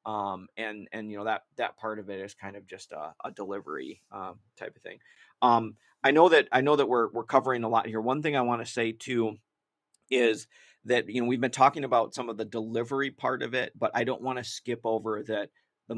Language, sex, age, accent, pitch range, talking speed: English, male, 30-49, American, 110-125 Hz, 250 wpm